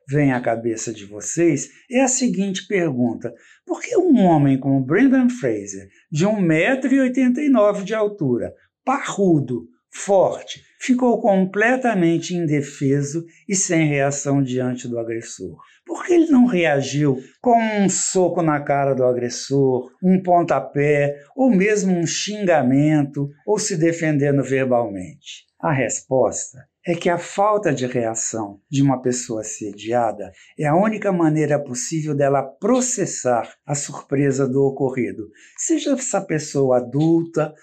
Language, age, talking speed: Portuguese, 60-79, 130 wpm